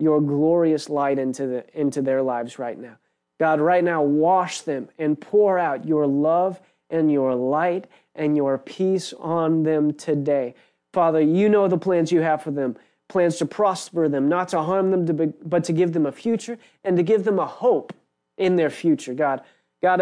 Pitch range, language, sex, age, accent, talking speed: 150-185 Hz, English, male, 30-49, American, 195 wpm